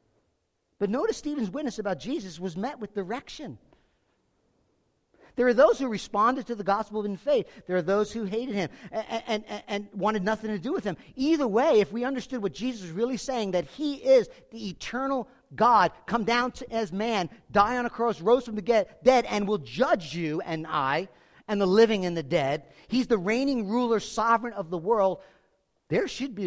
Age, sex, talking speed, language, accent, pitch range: 50-69, male, 195 wpm, English, American, 180-240 Hz